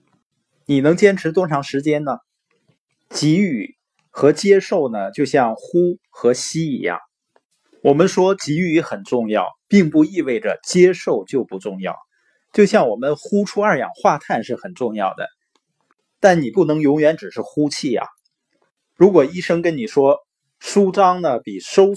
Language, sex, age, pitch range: Chinese, male, 20-39, 140-195 Hz